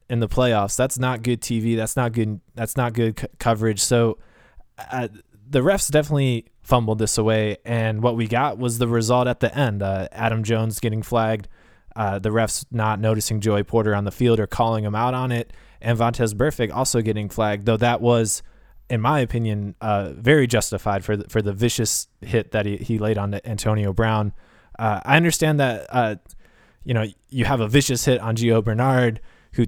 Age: 20-39